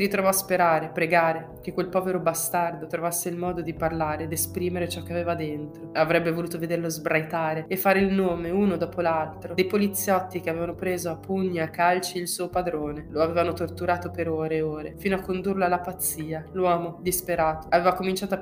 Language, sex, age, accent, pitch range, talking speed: Italian, female, 20-39, native, 160-180 Hz, 190 wpm